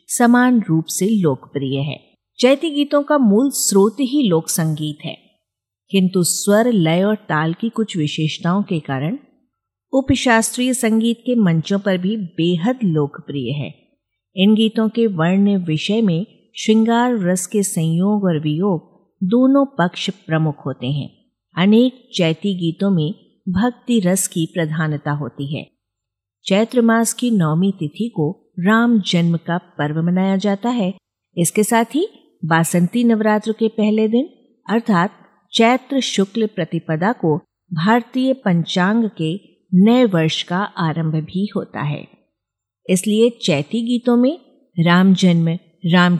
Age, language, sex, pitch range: 50-69, Hindi, female, 160-225 Hz